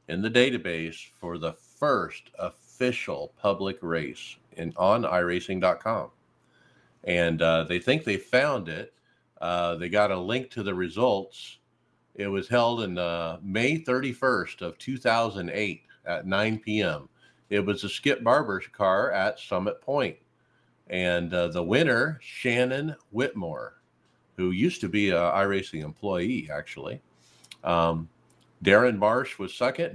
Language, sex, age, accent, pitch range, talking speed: English, male, 50-69, American, 85-120 Hz, 135 wpm